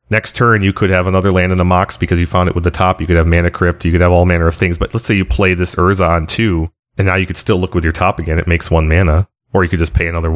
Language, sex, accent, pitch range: English, male, American, 85-100 Hz